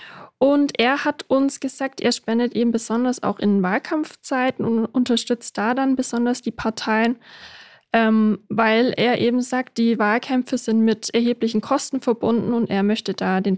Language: German